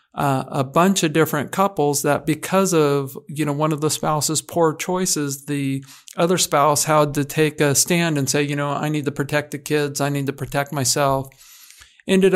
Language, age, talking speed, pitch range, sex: English, 50-69, 200 wpm, 150-175 Hz, male